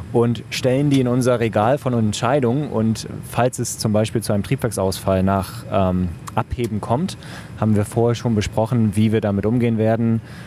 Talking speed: 170 wpm